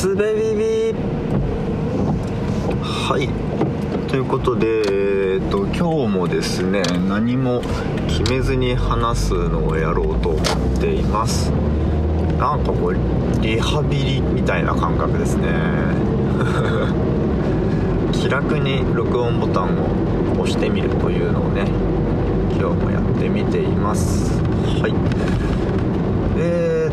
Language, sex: Japanese, male